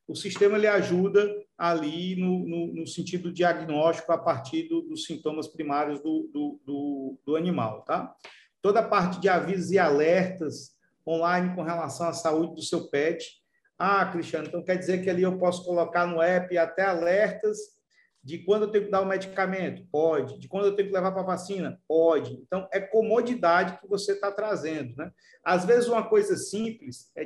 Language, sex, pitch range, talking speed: Portuguese, male, 170-205 Hz, 175 wpm